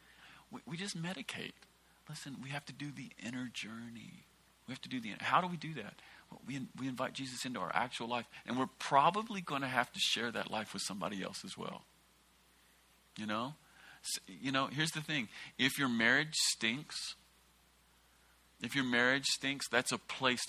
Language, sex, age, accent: English, male, 40-59, American